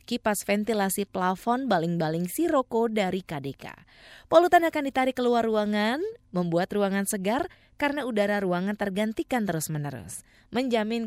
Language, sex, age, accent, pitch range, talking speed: Indonesian, female, 20-39, native, 180-255 Hz, 115 wpm